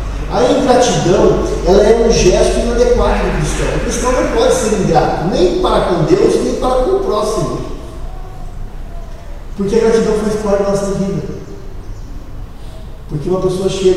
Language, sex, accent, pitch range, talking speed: Portuguese, male, Brazilian, 140-180 Hz, 160 wpm